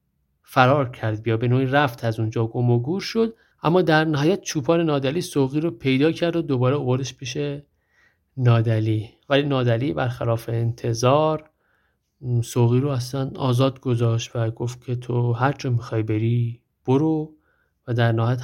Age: 50-69